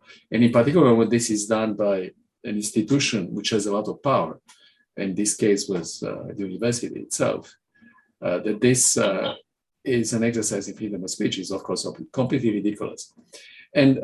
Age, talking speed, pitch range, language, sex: 50-69, 175 wpm, 105-130 Hz, English, male